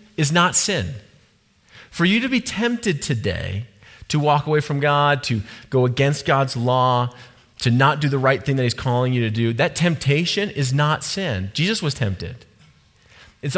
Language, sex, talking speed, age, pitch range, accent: English, male, 175 wpm, 30-49, 120-190 Hz, American